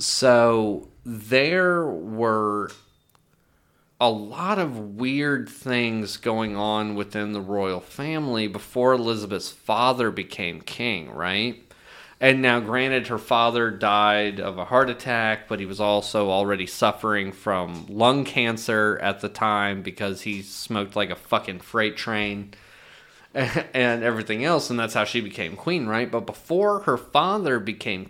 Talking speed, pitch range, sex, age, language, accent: 140 wpm, 105-125 Hz, male, 30-49, English, American